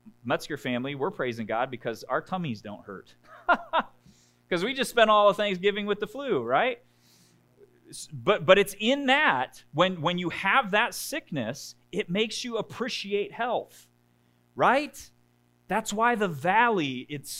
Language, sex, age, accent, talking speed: English, male, 30-49, American, 150 wpm